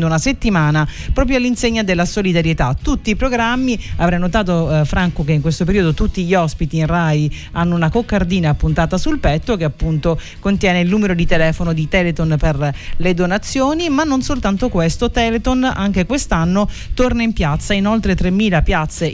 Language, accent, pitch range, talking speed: Italian, native, 165-215 Hz, 170 wpm